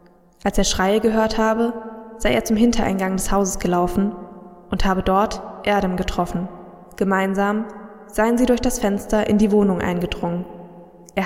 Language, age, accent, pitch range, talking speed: German, 20-39, German, 180-220 Hz, 150 wpm